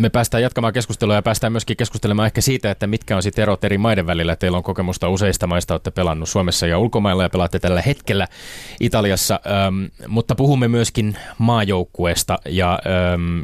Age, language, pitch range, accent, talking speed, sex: 20-39, Finnish, 90-120 Hz, native, 180 wpm, male